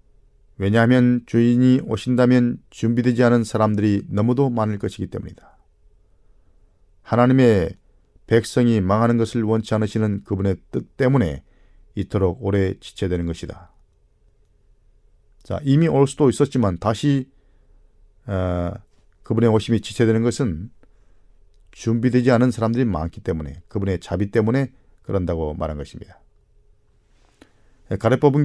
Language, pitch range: Korean, 90-125 Hz